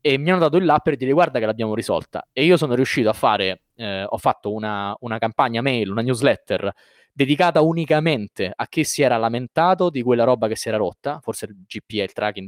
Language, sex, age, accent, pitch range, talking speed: Italian, male, 20-39, native, 115-150 Hz, 220 wpm